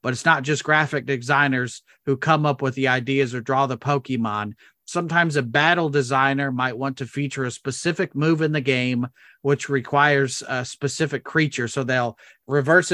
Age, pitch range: 40-59, 130-150 Hz